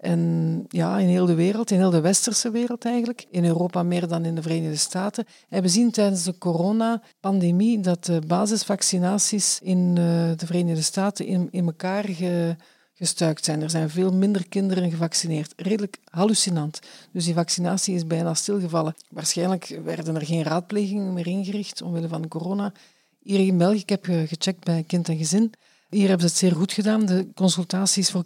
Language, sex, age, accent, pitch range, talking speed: Dutch, female, 50-69, Dutch, 170-195 Hz, 175 wpm